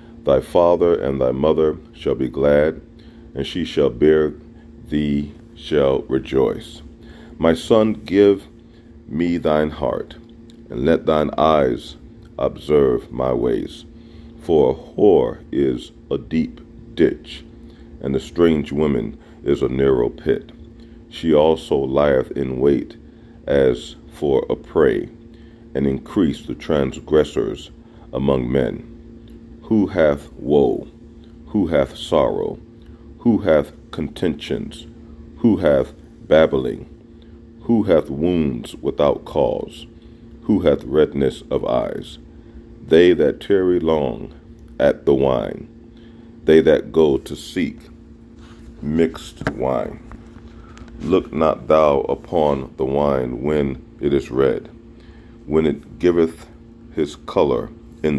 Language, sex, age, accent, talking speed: English, male, 40-59, American, 115 wpm